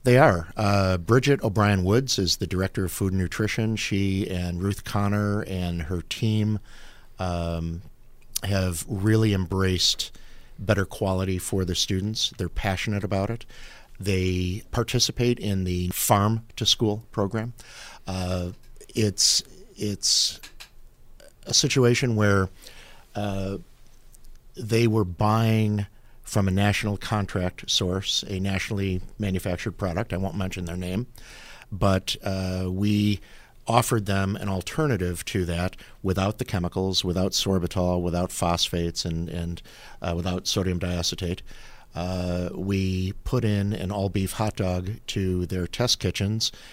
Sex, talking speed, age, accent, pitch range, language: male, 125 wpm, 50-69, American, 90-105 Hz, English